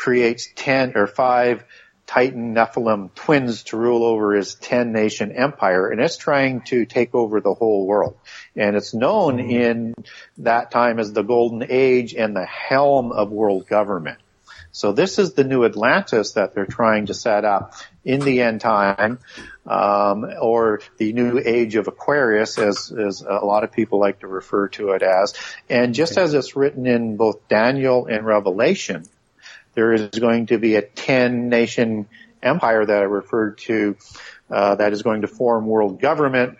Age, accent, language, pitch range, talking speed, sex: 50-69, American, English, 110-125 Hz, 170 wpm, male